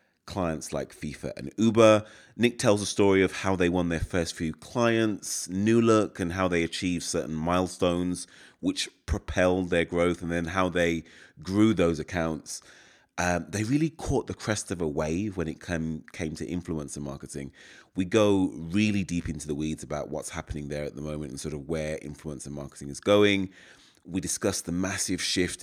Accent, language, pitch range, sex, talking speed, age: British, English, 80-95 Hz, male, 185 wpm, 30-49